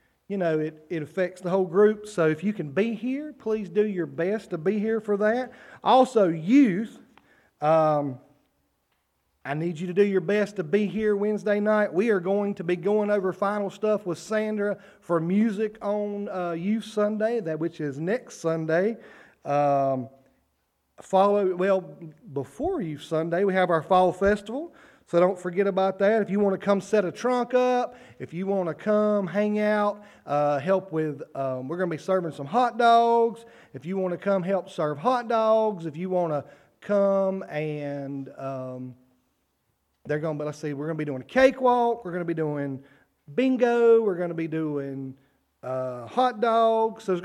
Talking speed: 185 wpm